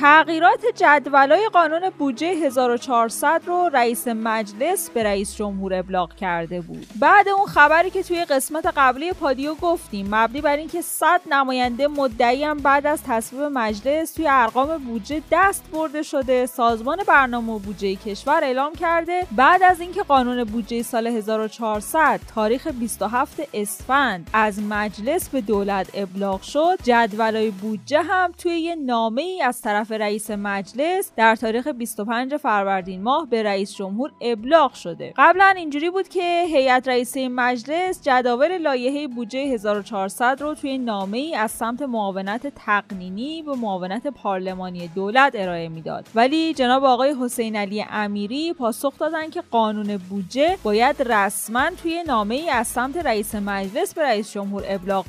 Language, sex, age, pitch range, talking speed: Persian, female, 10-29, 215-305 Hz, 140 wpm